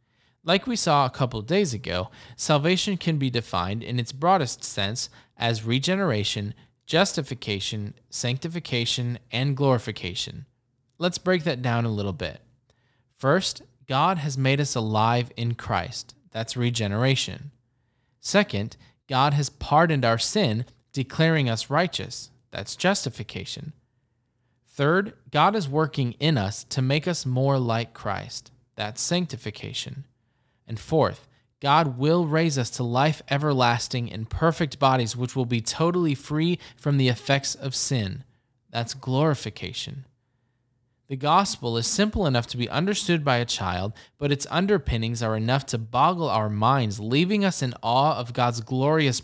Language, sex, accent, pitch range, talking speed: English, male, American, 120-150 Hz, 140 wpm